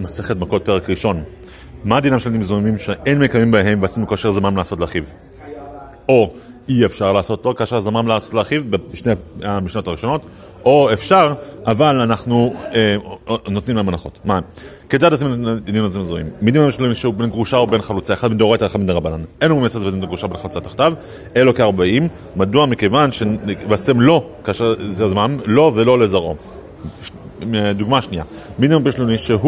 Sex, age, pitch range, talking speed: male, 30-49, 100-125 Hz, 115 wpm